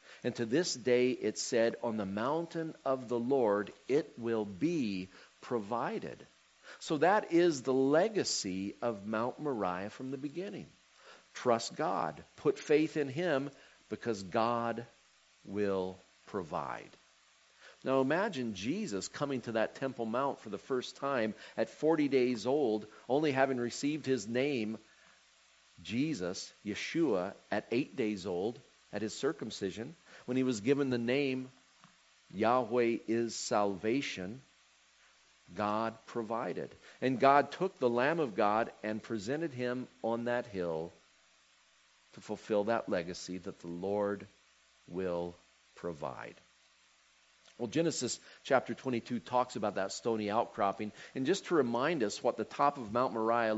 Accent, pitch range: American, 105-130 Hz